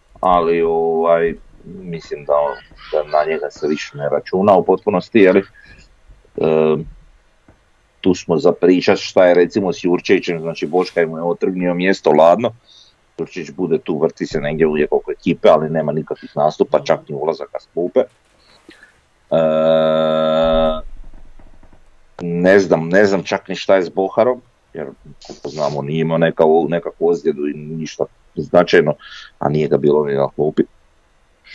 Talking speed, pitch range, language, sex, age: 135 wpm, 75-90 Hz, Croatian, male, 40-59